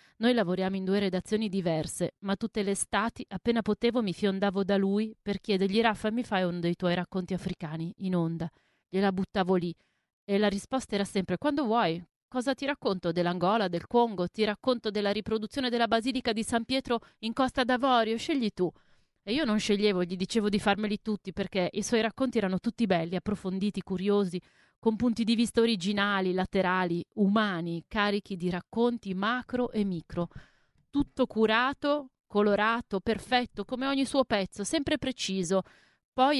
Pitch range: 185-230 Hz